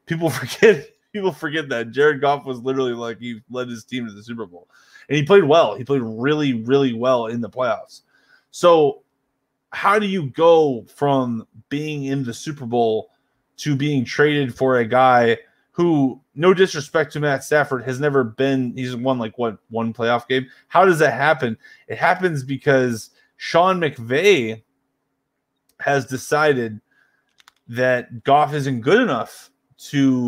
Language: English